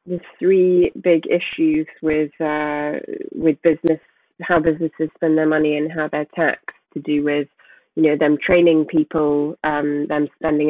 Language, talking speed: English, 155 wpm